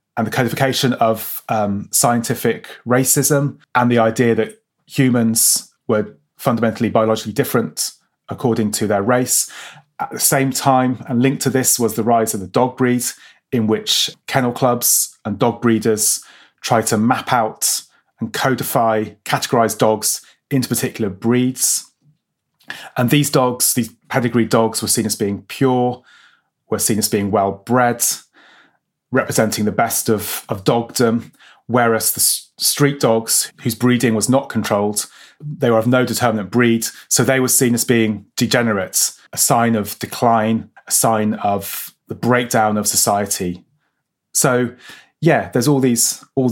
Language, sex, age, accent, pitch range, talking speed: English, male, 30-49, British, 110-125 Hz, 150 wpm